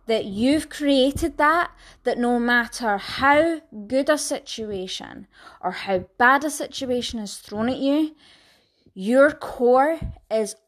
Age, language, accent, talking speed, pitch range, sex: 20-39, English, British, 130 wpm, 220-275 Hz, female